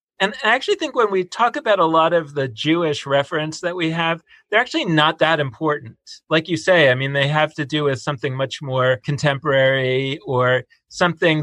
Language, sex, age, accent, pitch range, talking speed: English, male, 40-59, American, 130-165 Hz, 200 wpm